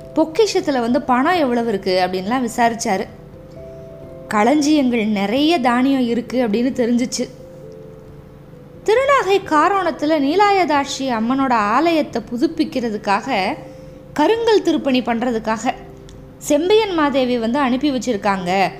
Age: 20-39